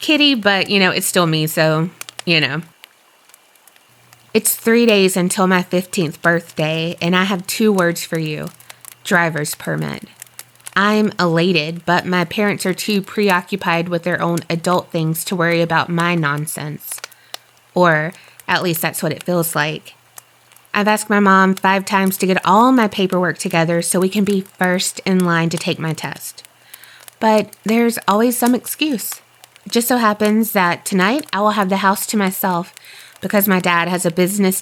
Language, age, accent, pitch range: English, 20-39, American, 170-200 Hz